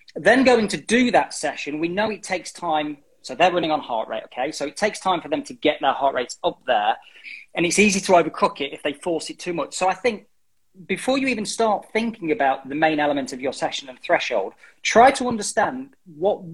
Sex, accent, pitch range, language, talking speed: male, British, 150-215 Hz, English, 230 wpm